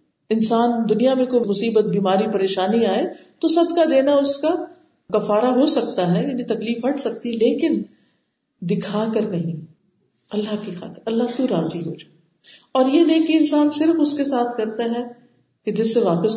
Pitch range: 185-270 Hz